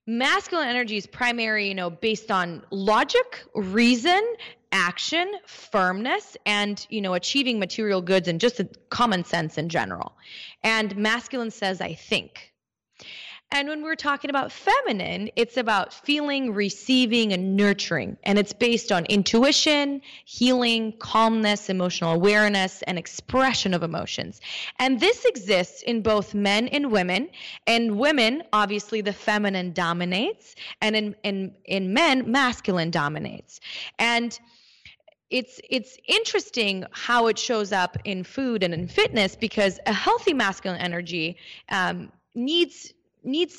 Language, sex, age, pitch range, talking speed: English, female, 20-39, 190-245 Hz, 130 wpm